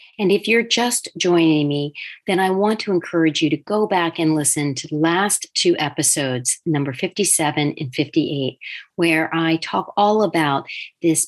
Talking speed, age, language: 170 wpm, 40-59, English